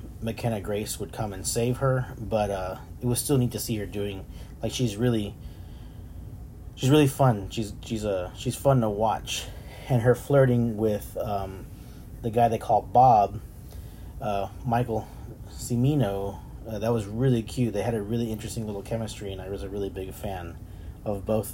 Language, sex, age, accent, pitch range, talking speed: English, male, 30-49, American, 100-125 Hz, 180 wpm